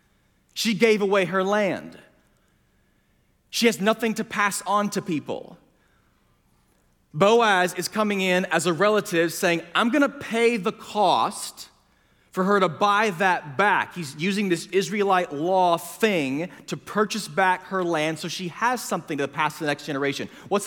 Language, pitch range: English, 175-220 Hz